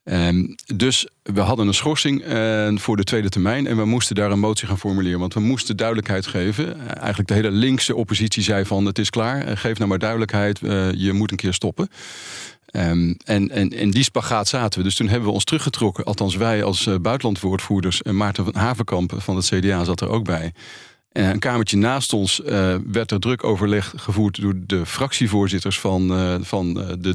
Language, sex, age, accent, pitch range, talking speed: Dutch, male, 40-59, Dutch, 95-115 Hz, 200 wpm